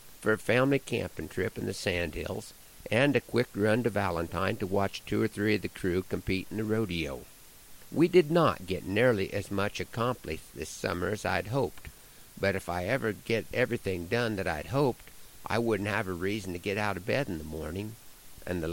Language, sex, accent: English, male, American